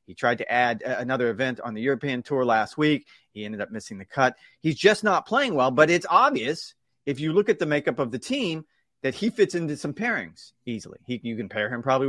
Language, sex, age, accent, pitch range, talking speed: English, male, 30-49, American, 115-150 Hz, 240 wpm